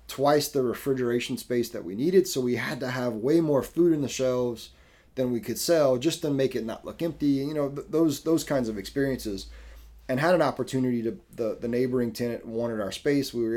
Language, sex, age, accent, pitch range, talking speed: English, male, 20-39, American, 100-125 Hz, 220 wpm